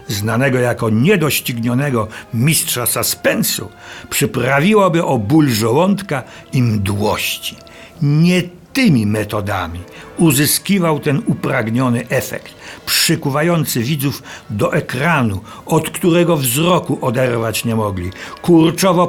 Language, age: Polish, 60-79